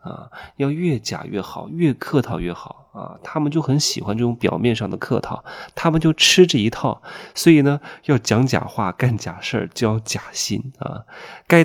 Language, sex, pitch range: Chinese, male, 105-140 Hz